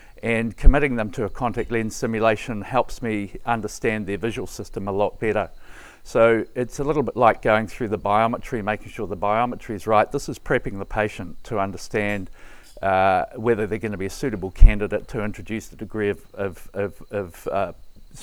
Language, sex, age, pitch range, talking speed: English, male, 50-69, 100-115 Hz, 190 wpm